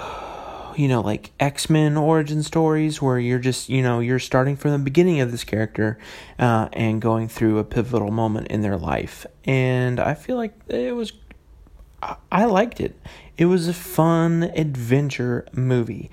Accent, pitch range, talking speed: American, 115-150 Hz, 165 wpm